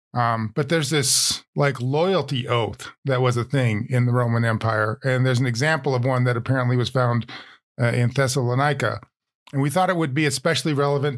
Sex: male